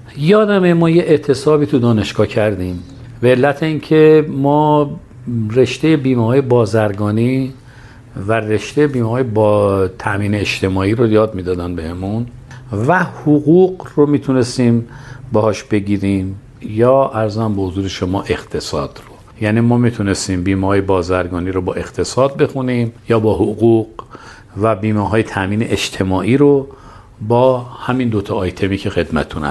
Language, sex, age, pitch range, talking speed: Persian, male, 50-69, 105-135 Hz, 130 wpm